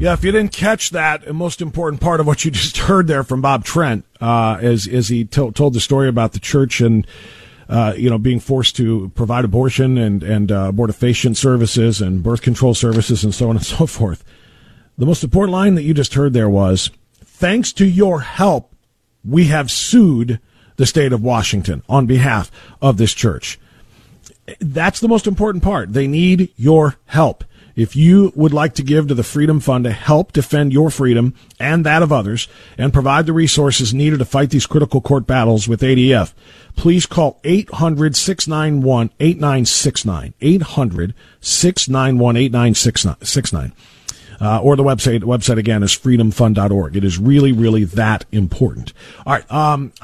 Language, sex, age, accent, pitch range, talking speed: English, male, 40-59, American, 115-155 Hz, 170 wpm